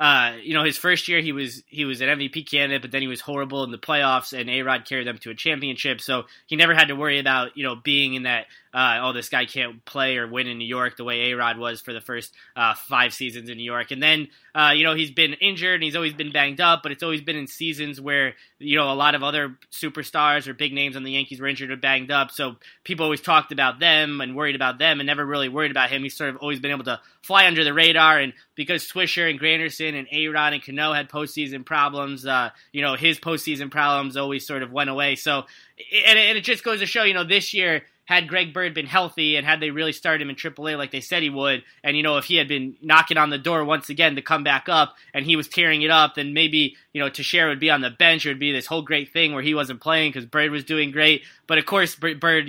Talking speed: 270 wpm